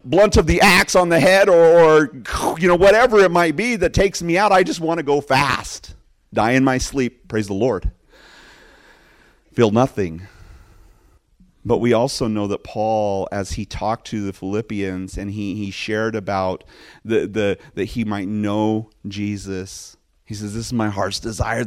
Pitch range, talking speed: 105-140 Hz, 180 wpm